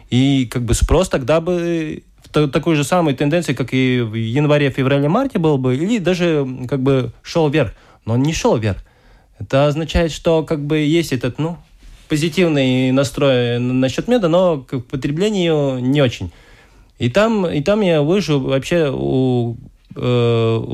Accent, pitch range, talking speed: native, 120-160 Hz, 155 wpm